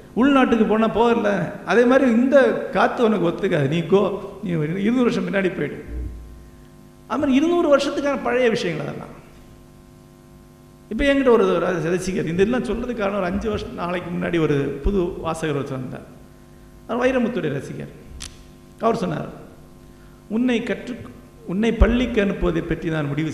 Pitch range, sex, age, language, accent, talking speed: 150-230 Hz, male, 50-69, Tamil, native, 135 wpm